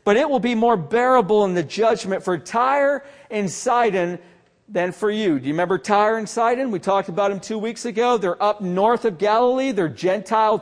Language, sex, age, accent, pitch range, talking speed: English, male, 40-59, American, 195-250 Hz, 205 wpm